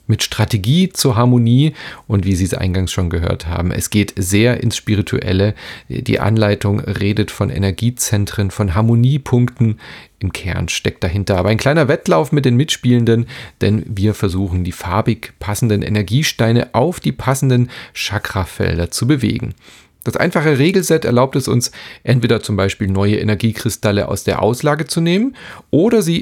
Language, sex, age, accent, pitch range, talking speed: German, male, 40-59, German, 100-125 Hz, 150 wpm